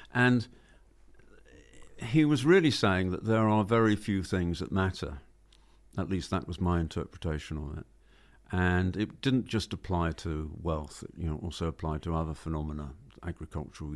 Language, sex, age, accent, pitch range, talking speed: English, male, 50-69, British, 85-105 Hz, 160 wpm